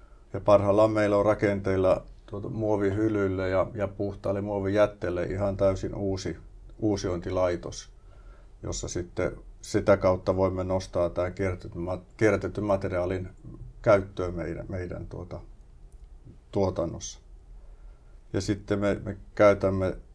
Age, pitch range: 50-69, 90-100 Hz